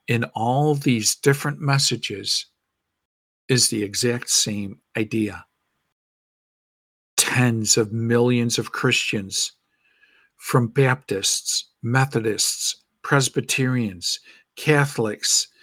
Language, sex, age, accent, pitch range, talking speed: English, male, 50-69, American, 120-170 Hz, 75 wpm